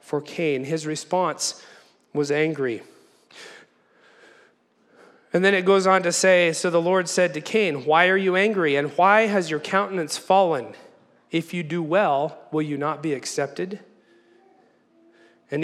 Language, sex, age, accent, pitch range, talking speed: English, male, 40-59, American, 160-210 Hz, 150 wpm